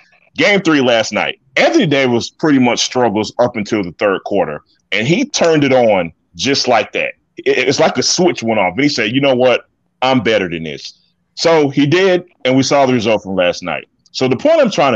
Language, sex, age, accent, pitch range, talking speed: English, male, 30-49, American, 105-145 Hz, 220 wpm